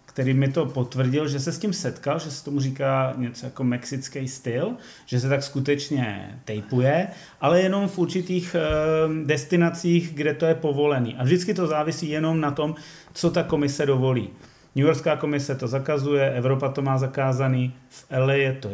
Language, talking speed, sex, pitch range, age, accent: Czech, 175 wpm, male, 130-155 Hz, 30-49, native